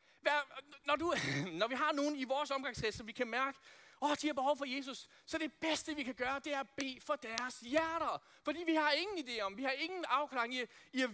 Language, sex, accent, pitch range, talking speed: Danish, male, native, 250-320 Hz, 260 wpm